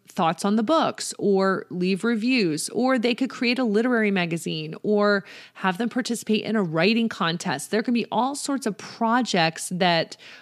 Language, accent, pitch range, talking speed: English, American, 175-230 Hz, 175 wpm